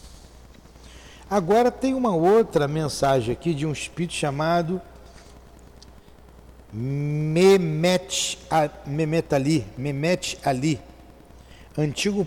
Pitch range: 100-165 Hz